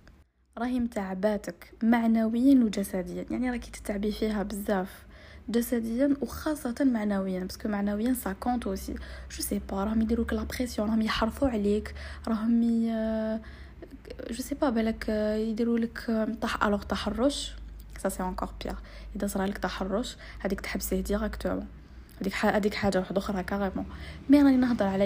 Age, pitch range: 20-39, 195-235 Hz